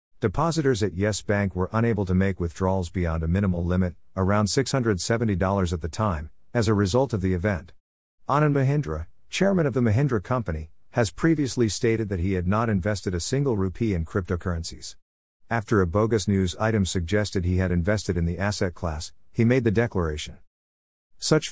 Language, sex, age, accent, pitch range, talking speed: English, male, 50-69, American, 85-115 Hz, 175 wpm